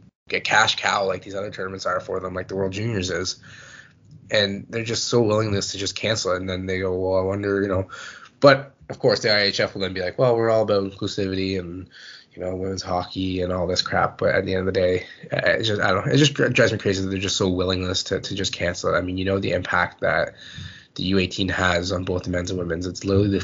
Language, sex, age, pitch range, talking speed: English, male, 20-39, 95-100 Hz, 260 wpm